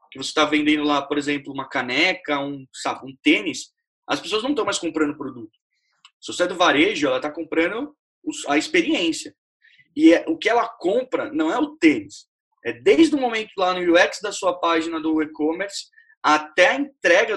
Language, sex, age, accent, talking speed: Portuguese, male, 20-39, Brazilian, 190 wpm